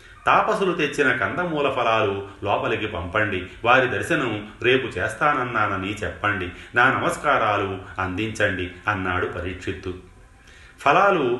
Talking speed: 90 wpm